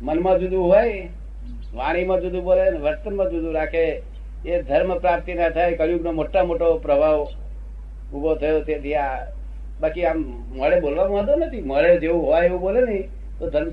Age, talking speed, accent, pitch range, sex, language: 60-79, 110 wpm, native, 145-215 Hz, male, Gujarati